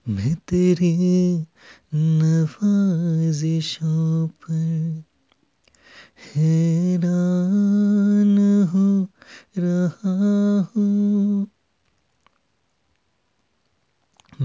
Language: English